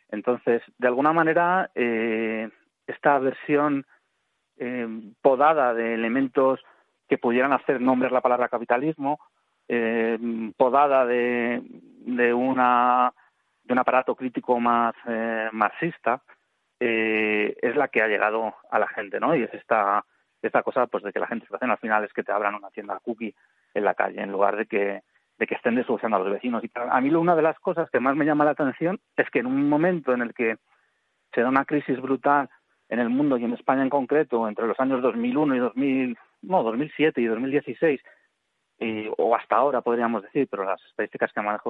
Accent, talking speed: Spanish, 190 wpm